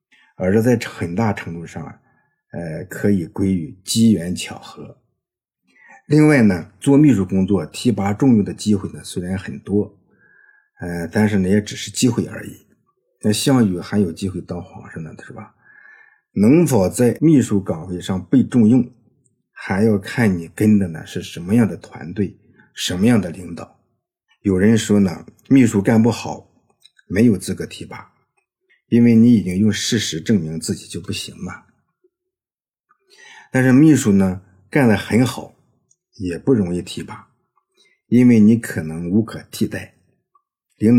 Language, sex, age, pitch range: Chinese, male, 50-69, 95-120 Hz